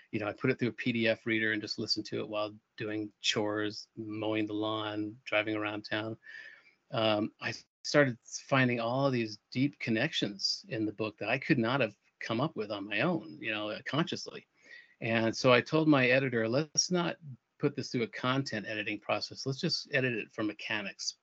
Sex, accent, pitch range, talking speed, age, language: male, American, 110-135 Hz, 195 wpm, 40-59, English